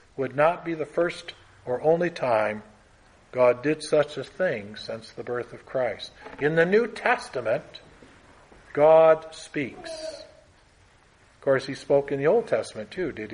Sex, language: male, English